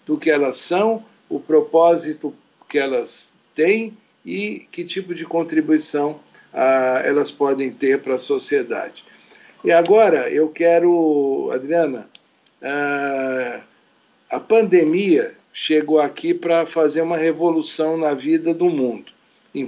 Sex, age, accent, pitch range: male, 60-79, Brazilian, 145-200 Hz